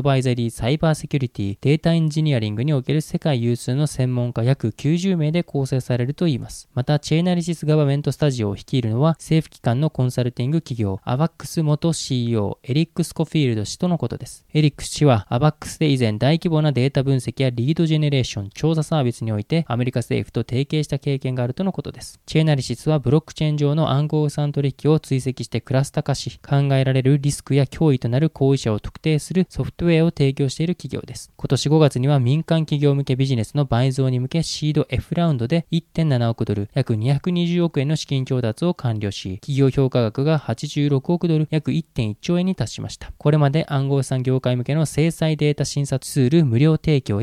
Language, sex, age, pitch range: Japanese, male, 20-39, 125-155 Hz